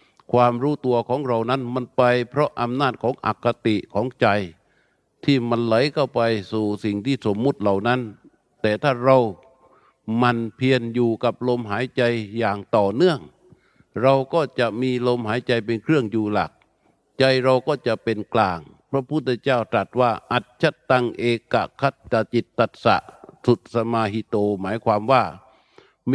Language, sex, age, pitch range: Thai, male, 60-79, 110-130 Hz